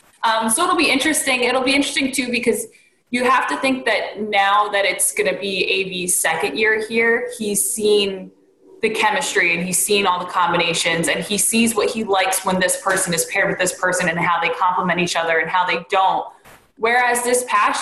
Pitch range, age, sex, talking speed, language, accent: 175-225 Hz, 20-39, female, 210 wpm, English, American